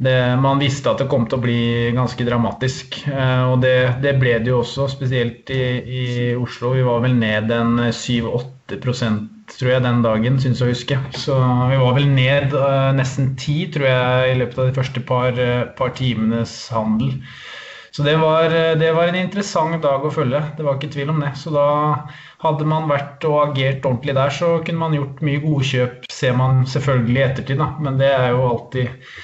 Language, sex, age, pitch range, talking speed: English, male, 20-39, 125-150 Hz, 200 wpm